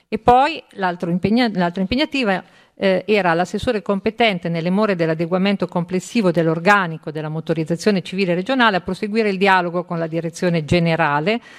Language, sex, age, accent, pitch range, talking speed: Italian, female, 50-69, native, 170-210 Hz, 135 wpm